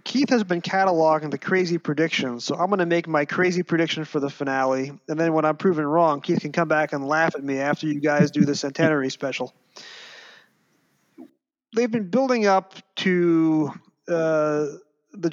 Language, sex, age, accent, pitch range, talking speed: English, male, 30-49, American, 145-185 Hz, 180 wpm